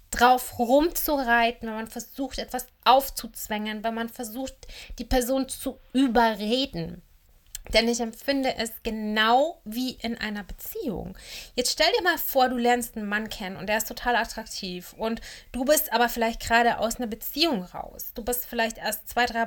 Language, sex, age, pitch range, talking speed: German, female, 30-49, 205-250 Hz, 165 wpm